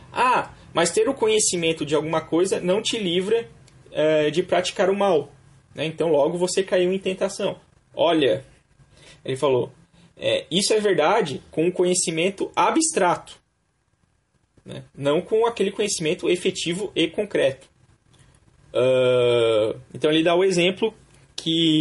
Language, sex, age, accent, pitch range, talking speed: Portuguese, male, 20-39, Brazilian, 135-210 Hz, 125 wpm